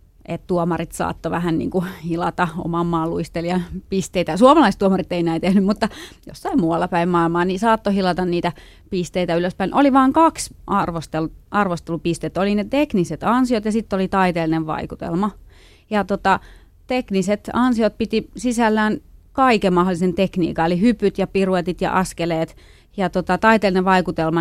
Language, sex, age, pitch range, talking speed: Finnish, female, 30-49, 170-210 Hz, 140 wpm